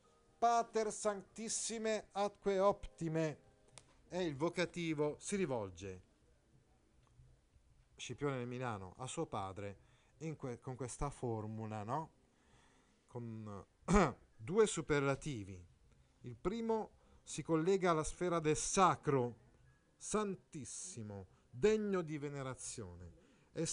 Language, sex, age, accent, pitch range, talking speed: Italian, male, 40-59, native, 120-175 Hz, 90 wpm